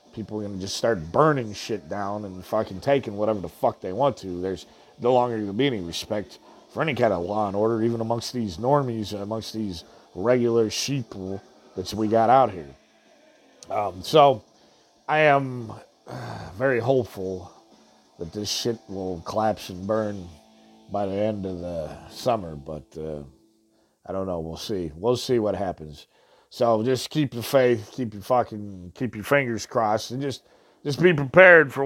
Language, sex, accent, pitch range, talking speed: English, male, American, 100-135 Hz, 180 wpm